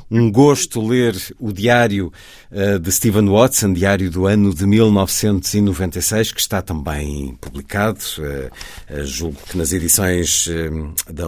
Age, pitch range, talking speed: 50-69, 90-110 Hz, 115 wpm